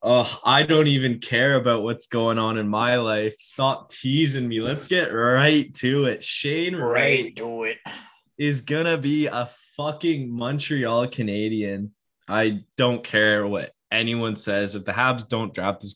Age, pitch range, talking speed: 10-29, 105-130 Hz, 165 wpm